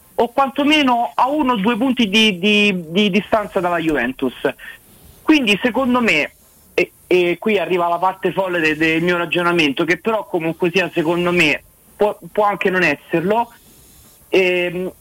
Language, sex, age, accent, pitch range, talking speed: Italian, male, 30-49, native, 185-235 Hz, 150 wpm